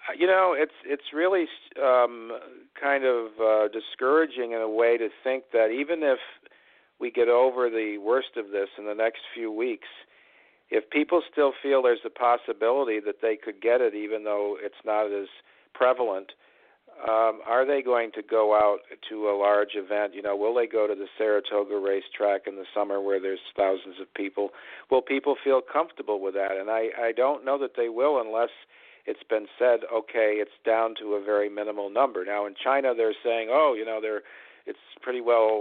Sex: male